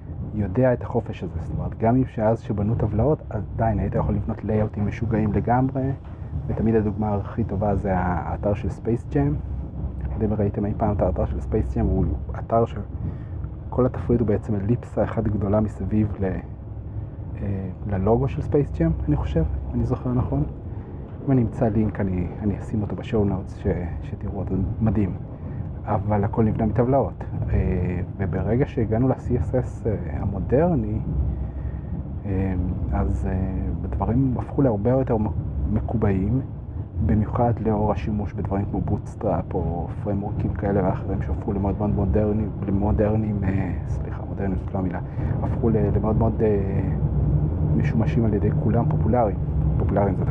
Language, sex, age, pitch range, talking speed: Hebrew, male, 30-49, 95-115 Hz, 130 wpm